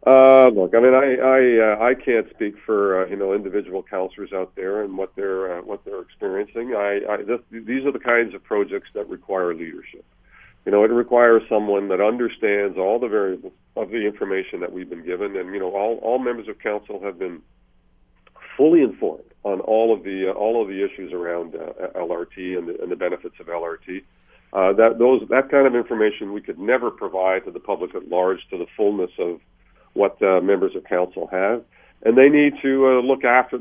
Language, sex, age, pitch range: English, male, 50-69, 95-140 Hz